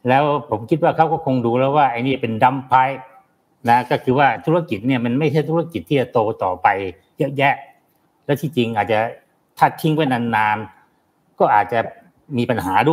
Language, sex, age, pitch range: Thai, male, 60-79, 120-160 Hz